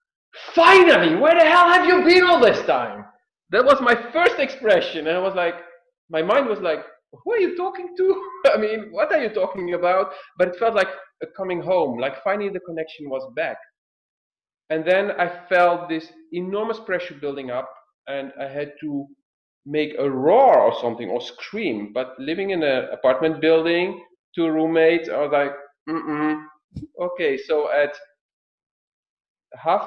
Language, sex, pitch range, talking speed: English, male, 145-240 Hz, 165 wpm